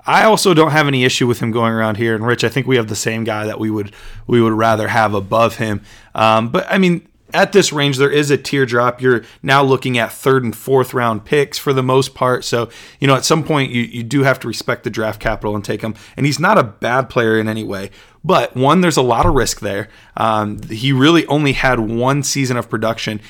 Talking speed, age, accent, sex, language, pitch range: 250 wpm, 30-49, American, male, English, 115-155 Hz